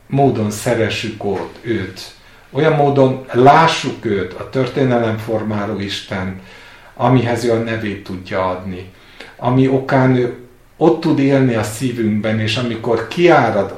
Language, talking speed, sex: Hungarian, 125 wpm, male